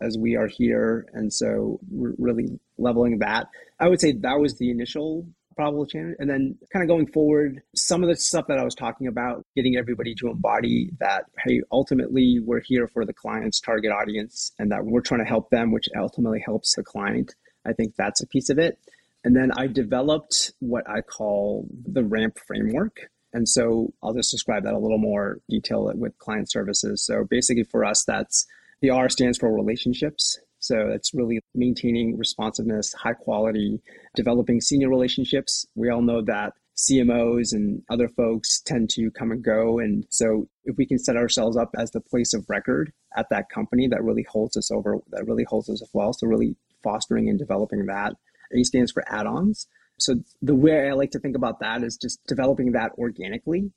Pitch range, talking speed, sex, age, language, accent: 115-135 Hz, 195 wpm, male, 30-49, English, American